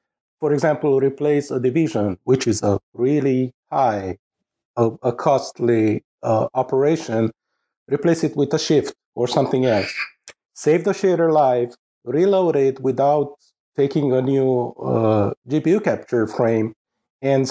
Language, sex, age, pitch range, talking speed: English, male, 50-69, 115-145 Hz, 125 wpm